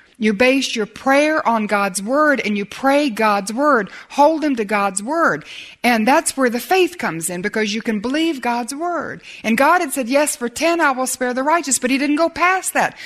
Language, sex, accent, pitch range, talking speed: English, female, American, 240-330 Hz, 220 wpm